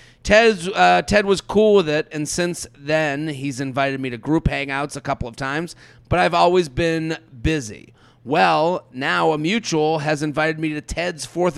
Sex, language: male, English